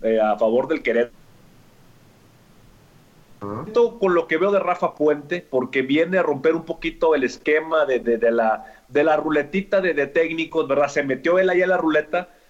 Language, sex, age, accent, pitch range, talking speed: English, male, 30-49, Mexican, 140-195 Hz, 185 wpm